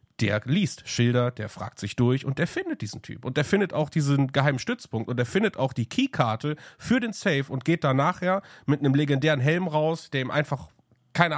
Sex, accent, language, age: male, German, English, 30-49